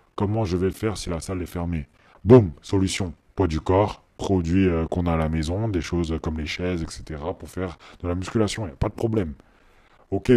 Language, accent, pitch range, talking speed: French, French, 80-100 Hz, 225 wpm